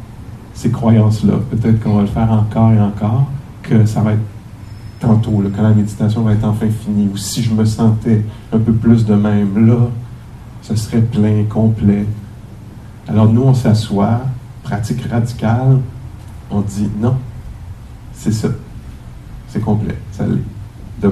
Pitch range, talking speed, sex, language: 105-115 Hz, 155 wpm, male, English